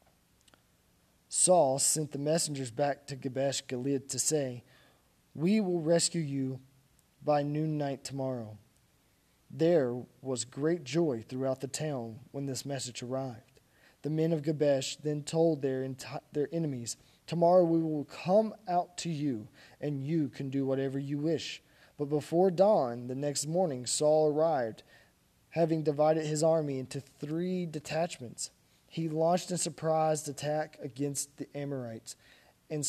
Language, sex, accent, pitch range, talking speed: English, male, American, 130-160 Hz, 140 wpm